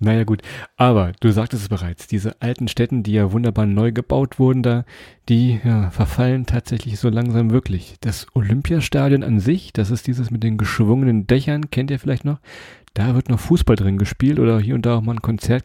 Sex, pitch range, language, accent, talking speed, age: male, 110-130 Hz, German, German, 200 wpm, 40-59